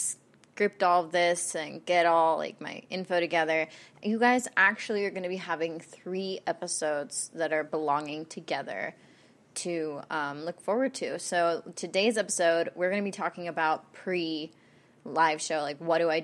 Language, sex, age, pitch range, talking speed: English, female, 20-39, 160-185 Hz, 165 wpm